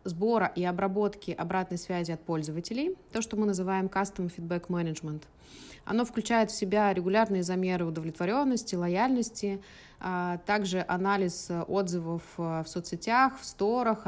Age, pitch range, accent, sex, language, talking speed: 20-39, 180-215 Hz, native, female, Russian, 125 wpm